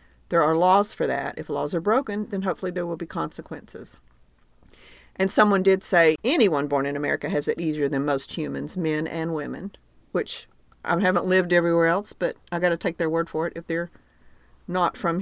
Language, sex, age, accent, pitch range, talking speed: English, female, 50-69, American, 155-185 Hz, 200 wpm